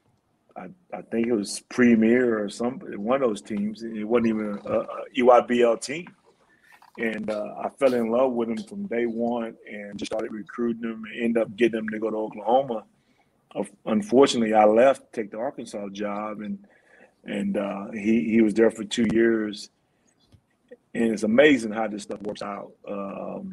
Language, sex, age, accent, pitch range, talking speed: English, male, 30-49, American, 105-115 Hz, 180 wpm